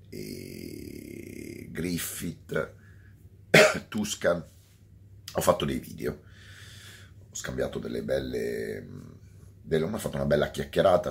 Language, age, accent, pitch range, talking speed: Italian, 30-49, native, 75-100 Hz, 90 wpm